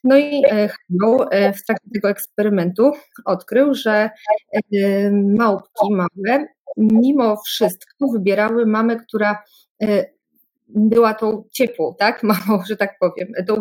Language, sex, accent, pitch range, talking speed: Polish, female, native, 200-235 Hz, 105 wpm